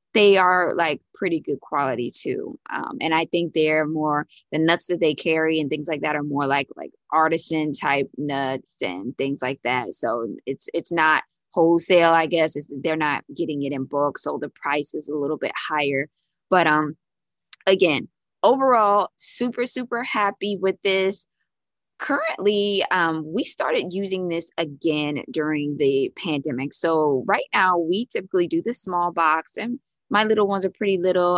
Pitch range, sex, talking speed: 155-185 Hz, female, 170 wpm